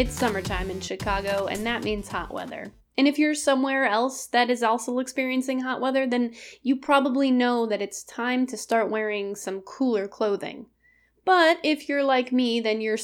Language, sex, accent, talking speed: English, female, American, 185 wpm